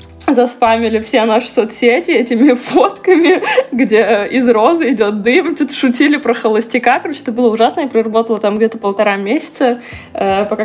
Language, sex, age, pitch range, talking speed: Russian, female, 20-39, 185-240 Hz, 145 wpm